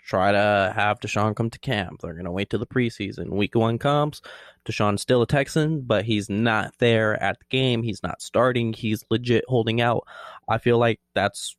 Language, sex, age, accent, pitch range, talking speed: English, male, 20-39, American, 105-125 Hz, 200 wpm